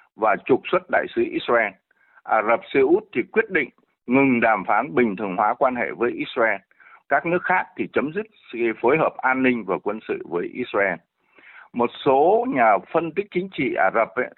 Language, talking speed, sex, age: Vietnamese, 195 wpm, male, 60-79